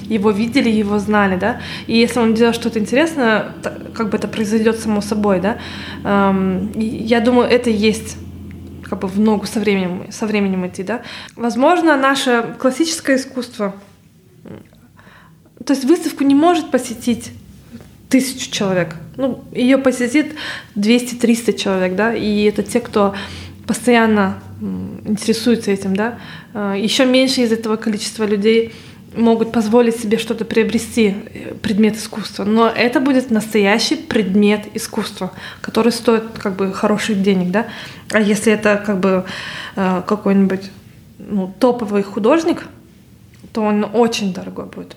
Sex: female